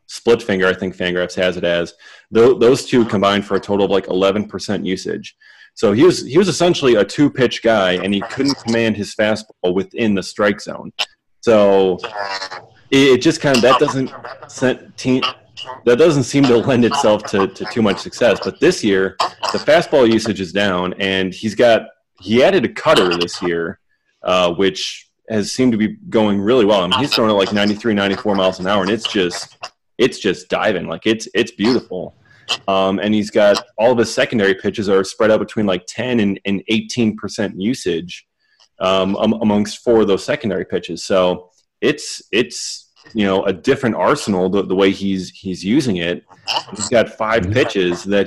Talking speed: 190 wpm